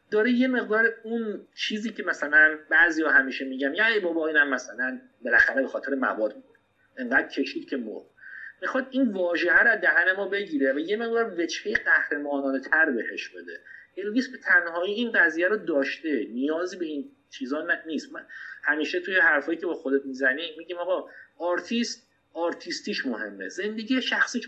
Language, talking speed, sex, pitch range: Persian, 165 wpm, male, 155-250 Hz